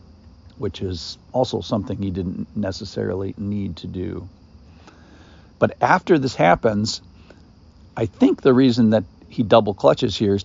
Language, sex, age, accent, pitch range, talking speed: English, male, 50-69, American, 95-115 Hz, 140 wpm